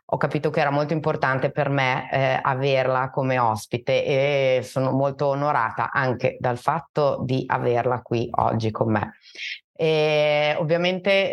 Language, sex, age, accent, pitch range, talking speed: Italian, female, 30-49, native, 130-155 Hz, 145 wpm